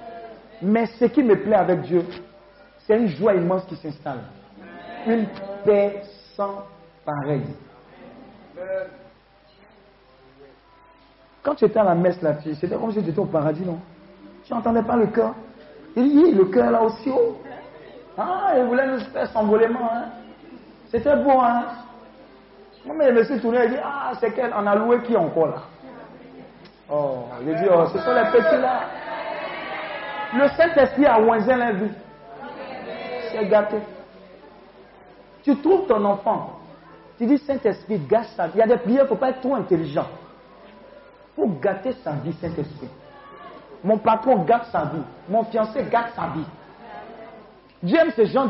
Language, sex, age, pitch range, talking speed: French, male, 50-69, 195-260 Hz, 160 wpm